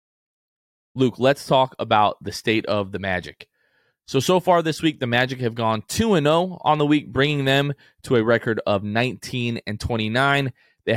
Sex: male